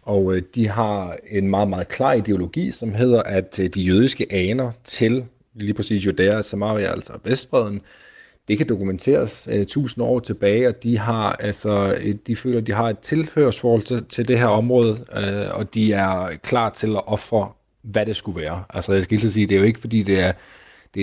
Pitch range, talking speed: 100-115 Hz, 200 wpm